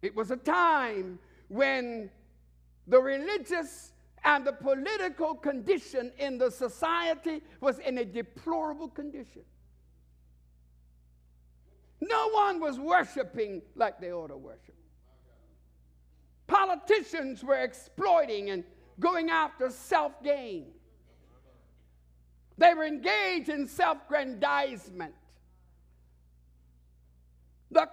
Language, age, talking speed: English, 60-79, 90 wpm